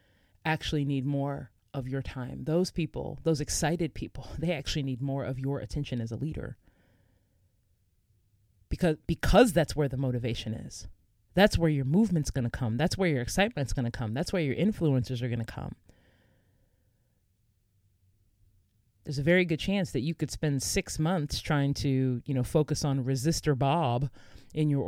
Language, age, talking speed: English, 30-49, 170 wpm